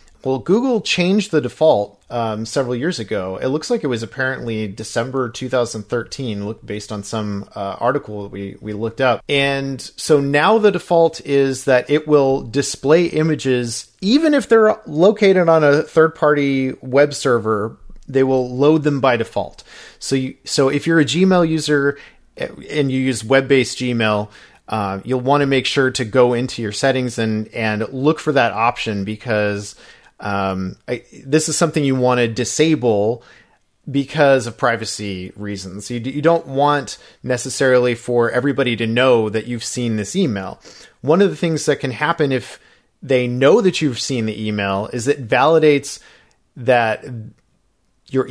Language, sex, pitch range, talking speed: English, male, 115-150 Hz, 165 wpm